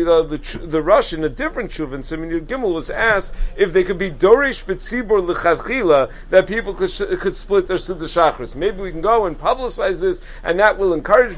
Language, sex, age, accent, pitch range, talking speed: English, male, 50-69, American, 165-215 Hz, 200 wpm